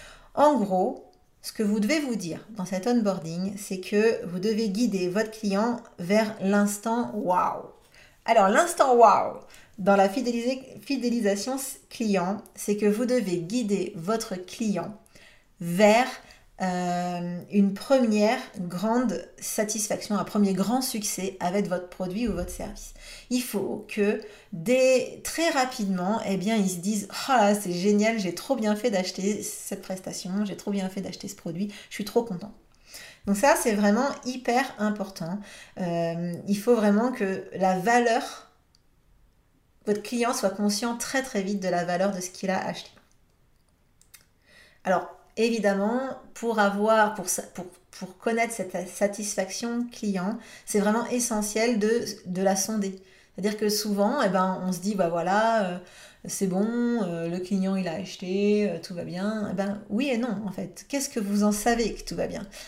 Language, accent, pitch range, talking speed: French, French, 190-230 Hz, 165 wpm